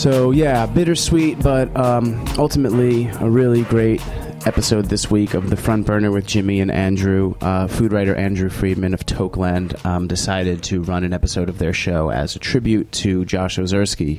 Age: 30-49